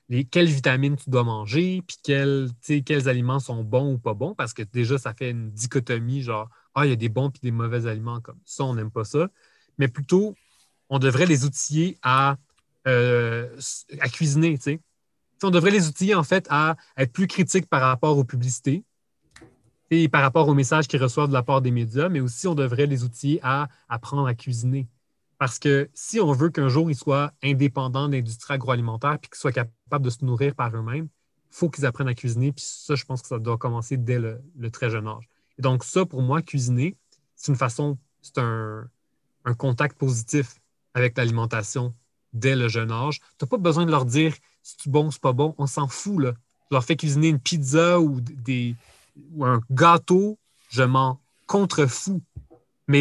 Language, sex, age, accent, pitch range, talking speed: French, male, 30-49, Canadian, 125-150 Hz, 205 wpm